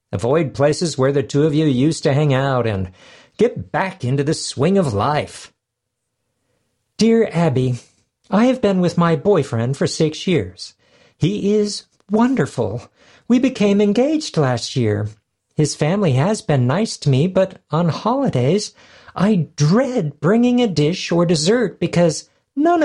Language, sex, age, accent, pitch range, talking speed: English, male, 50-69, American, 140-220 Hz, 150 wpm